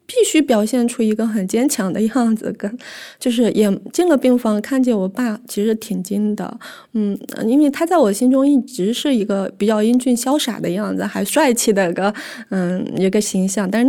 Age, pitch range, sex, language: 20-39, 200-255 Hz, female, Chinese